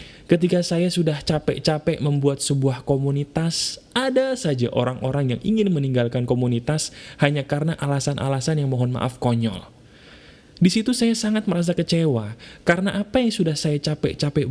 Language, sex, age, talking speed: Indonesian, male, 20-39, 135 wpm